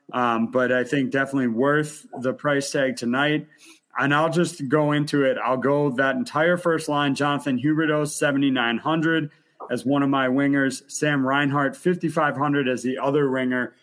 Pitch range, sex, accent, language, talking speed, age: 130-160 Hz, male, American, English, 160 wpm, 30-49